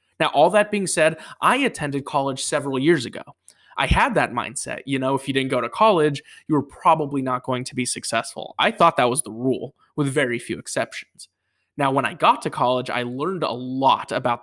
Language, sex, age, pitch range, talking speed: English, male, 20-39, 130-170 Hz, 215 wpm